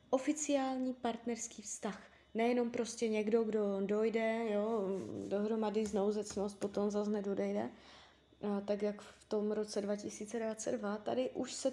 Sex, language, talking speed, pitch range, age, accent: female, Czech, 125 wpm, 200-225 Hz, 20-39, native